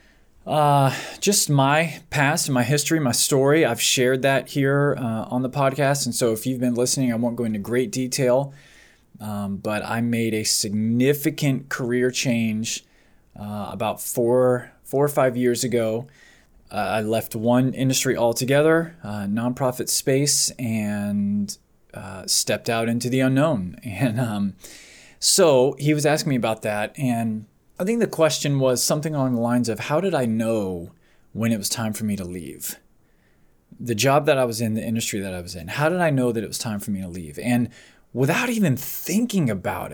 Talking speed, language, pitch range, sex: 185 wpm, English, 110-145 Hz, male